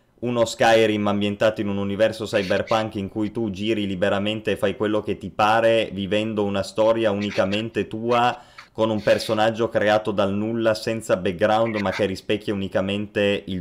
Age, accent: 20-39, native